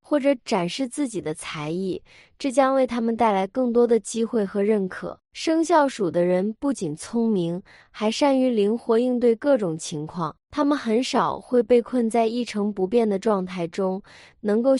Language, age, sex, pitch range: Chinese, 20-39, female, 190-255 Hz